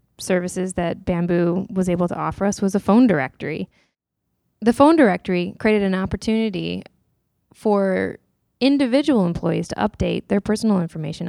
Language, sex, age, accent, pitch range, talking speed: English, female, 10-29, American, 170-205 Hz, 140 wpm